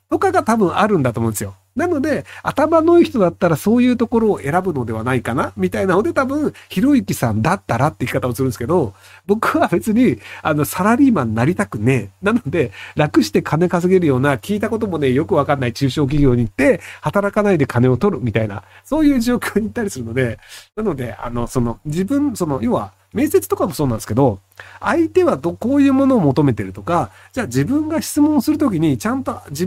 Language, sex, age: Japanese, male, 40-59